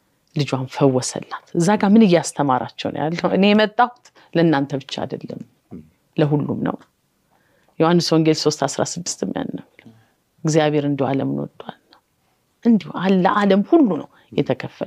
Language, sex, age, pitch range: Amharic, female, 30-49, 155-225 Hz